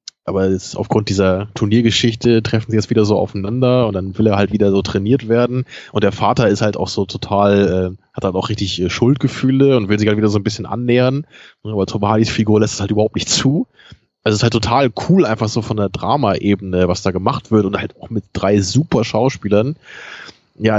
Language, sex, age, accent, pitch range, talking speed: German, male, 20-39, German, 110-135 Hz, 220 wpm